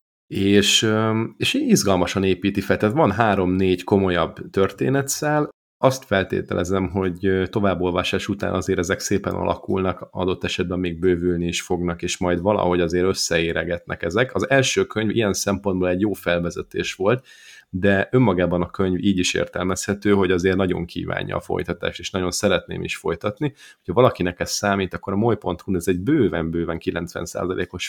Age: 30-49